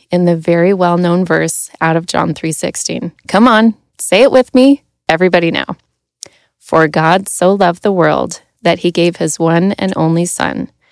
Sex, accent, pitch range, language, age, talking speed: female, American, 165-195 Hz, English, 30-49, 170 wpm